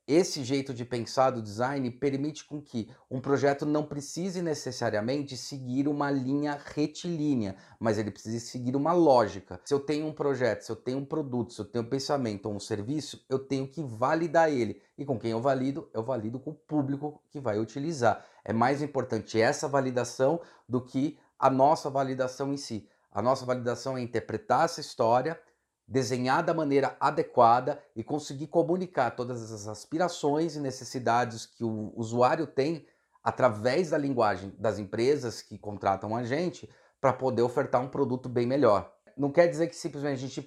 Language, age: Portuguese, 30-49